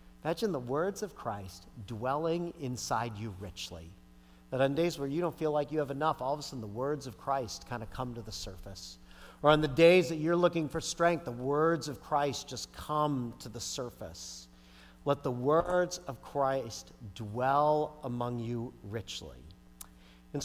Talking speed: 180 wpm